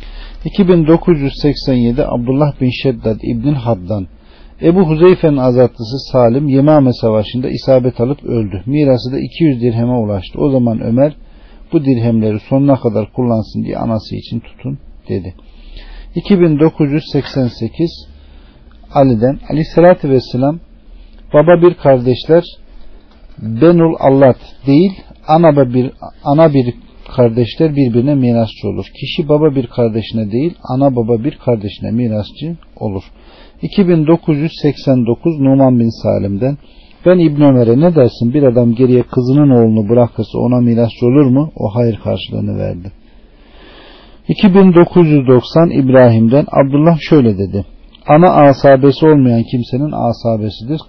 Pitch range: 115-150 Hz